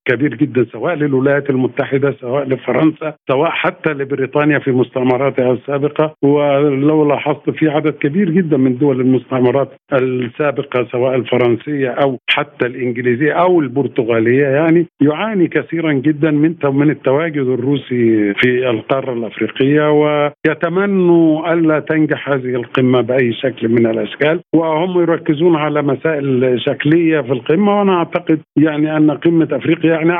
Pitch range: 130-155 Hz